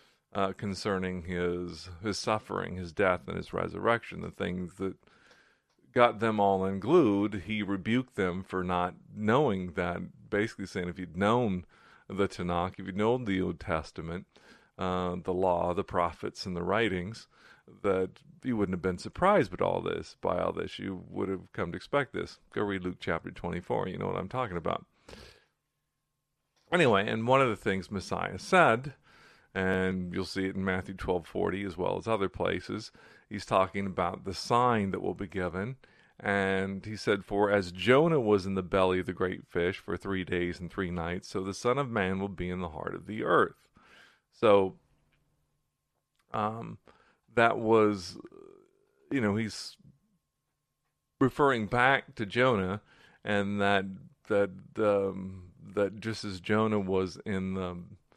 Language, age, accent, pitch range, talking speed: English, 40-59, American, 90-110 Hz, 165 wpm